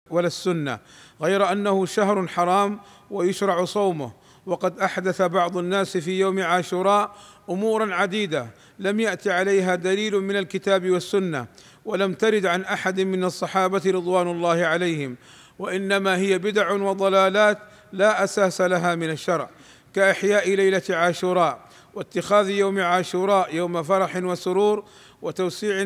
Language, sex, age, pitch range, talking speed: Arabic, male, 50-69, 180-205 Hz, 120 wpm